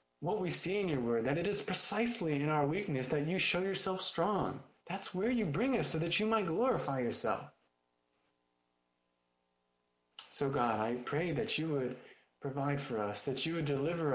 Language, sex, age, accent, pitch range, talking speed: English, male, 20-39, American, 100-145 Hz, 180 wpm